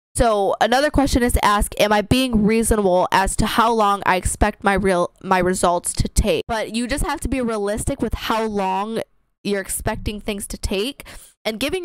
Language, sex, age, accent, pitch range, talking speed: English, female, 10-29, American, 205-255 Hz, 195 wpm